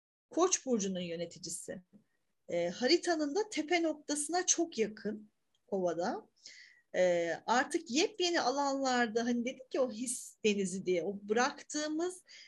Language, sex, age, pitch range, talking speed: Turkish, female, 40-59, 210-270 Hz, 115 wpm